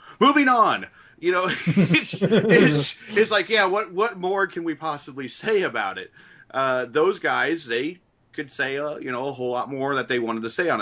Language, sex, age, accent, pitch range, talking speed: English, male, 40-59, American, 120-160 Hz, 205 wpm